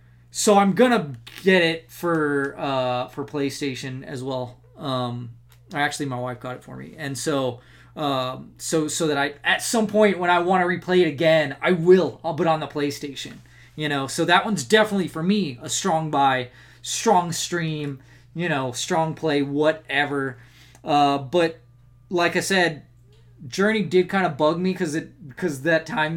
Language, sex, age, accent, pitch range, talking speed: English, male, 20-39, American, 135-170 Hz, 175 wpm